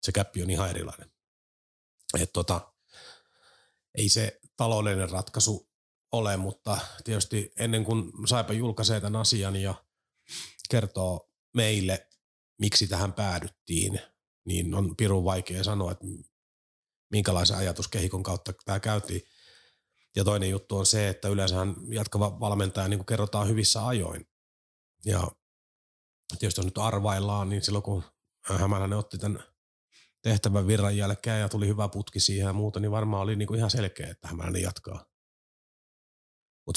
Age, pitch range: 30-49, 95-105 Hz